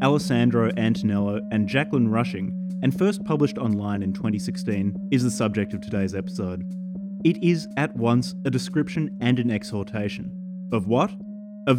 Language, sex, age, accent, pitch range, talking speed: English, male, 30-49, Australian, 105-145 Hz, 150 wpm